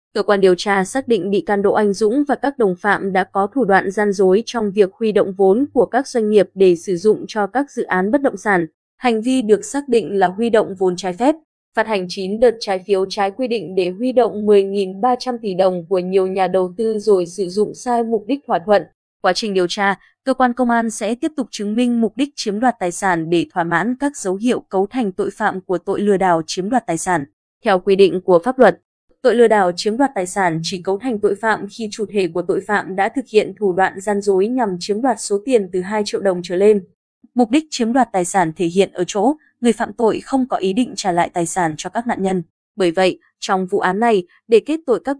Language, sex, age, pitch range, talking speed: Vietnamese, female, 20-39, 190-235 Hz, 255 wpm